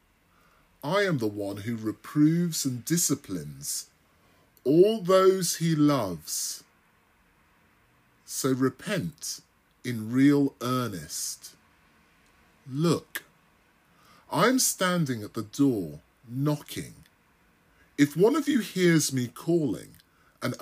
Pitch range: 115-170 Hz